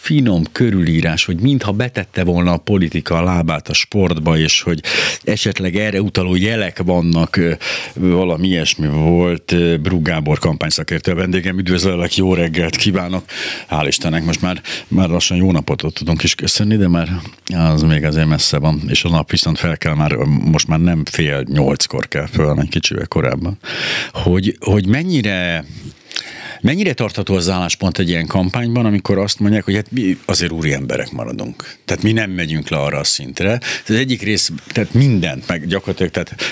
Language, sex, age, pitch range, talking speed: Hungarian, male, 60-79, 80-100 Hz, 165 wpm